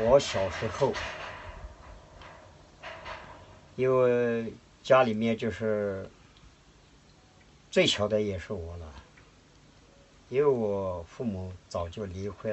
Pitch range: 90-120 Hz